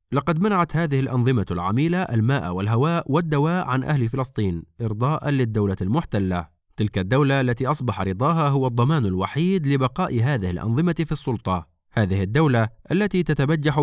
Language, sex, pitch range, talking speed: Arabic, male, 105-150 Hz, 135 wpm